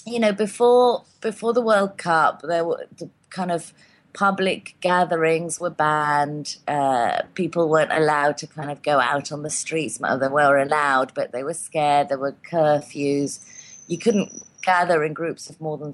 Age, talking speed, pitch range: 30-49, 175 wpm, 155-215 Hz